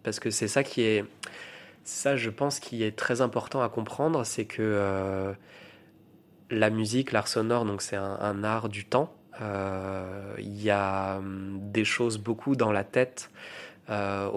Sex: male